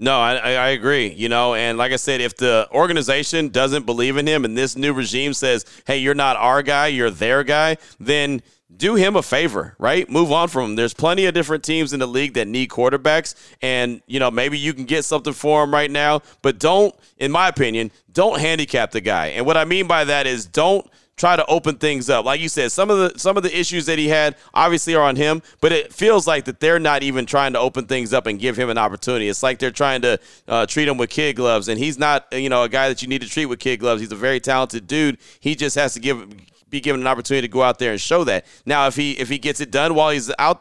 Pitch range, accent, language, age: 130-155 Hz, American, English, 30-49